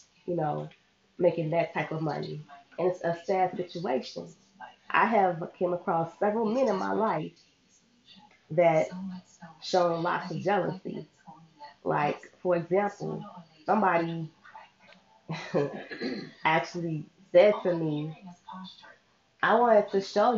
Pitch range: 170-215 Hz